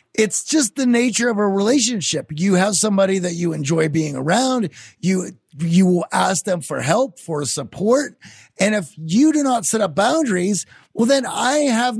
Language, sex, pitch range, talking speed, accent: English, male, 165-225 Hz, 180 wpm, American